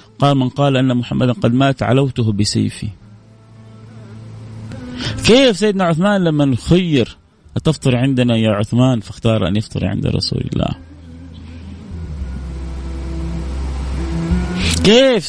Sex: male